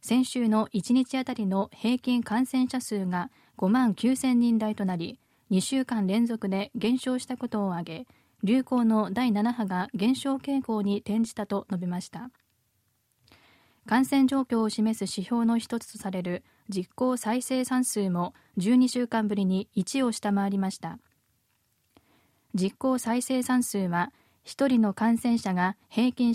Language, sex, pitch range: Japanese, female, 195-245 Hz